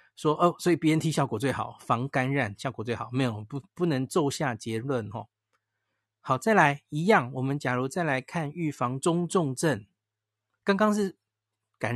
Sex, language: male, Chinese